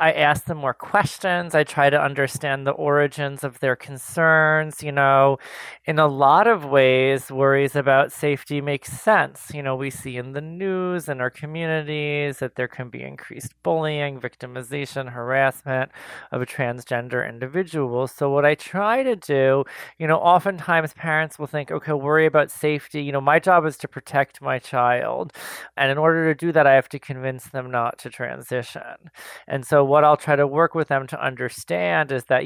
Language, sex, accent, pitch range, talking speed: English, male, American, 125-145 Hz, 185 wpm